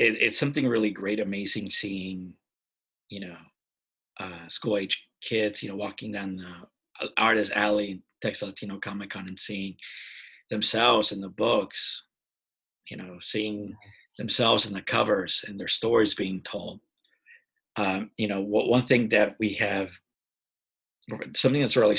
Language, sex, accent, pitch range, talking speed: English, male, American, 95-115 Hz, 140 wpm